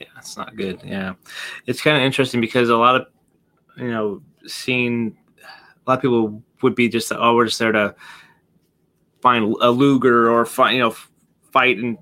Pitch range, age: 110-130 Hz, 30-49